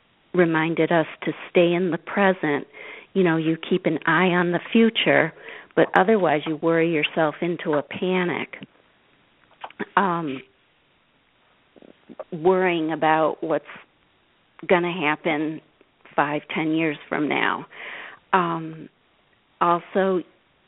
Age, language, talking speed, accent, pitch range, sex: 50-69, English, 110 wpm, American, 160-180 Hz, female